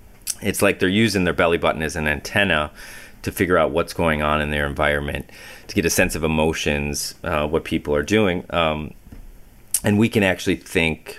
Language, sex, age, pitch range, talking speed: English, male, 30-49, 75-95 Hz, 195 wpm